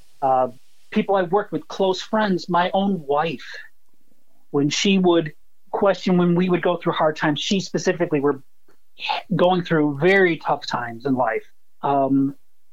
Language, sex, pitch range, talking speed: English, male, 160-210 Hz, 150 wpm